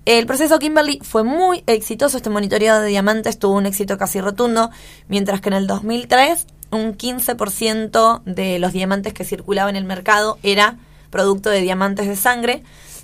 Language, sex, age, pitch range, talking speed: Spanish, female, 20-39, 195-230 Hz, 165 wpm